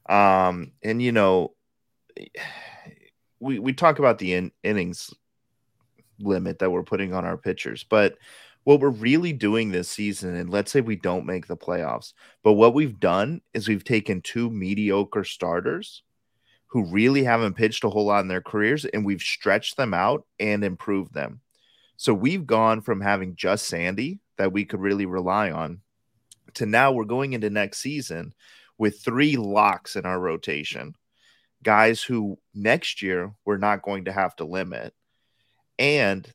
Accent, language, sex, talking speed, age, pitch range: American, English, male, 165 wpm, 30-49, 95-115 Hz